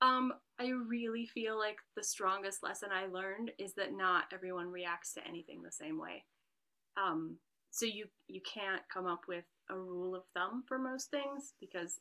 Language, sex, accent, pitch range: English, female, American, 180-225 Hz